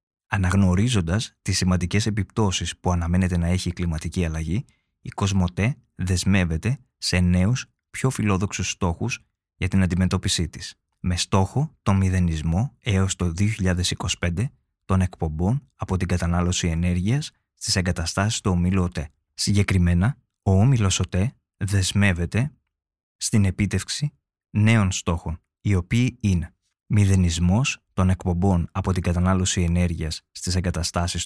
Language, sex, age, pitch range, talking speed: Greek, male, 20-39, 90-105 Hz, 120 wpm